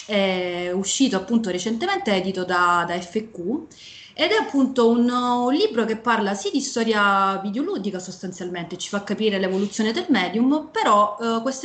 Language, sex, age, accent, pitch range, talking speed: Italian, female, 30-49, native, 185-235 Hz, 155 wpm